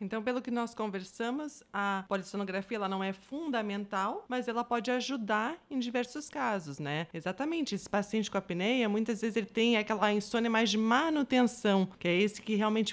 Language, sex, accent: Portuguese, female, Brazilian